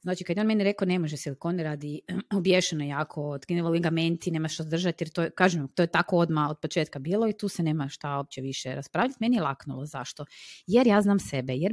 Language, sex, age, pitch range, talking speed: Croatian, female, 30-49, 145-195 Hz, 220 wpm